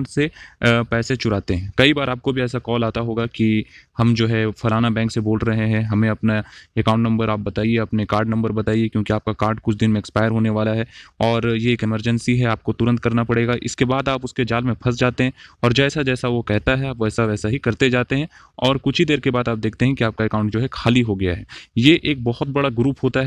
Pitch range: 115-135 Hz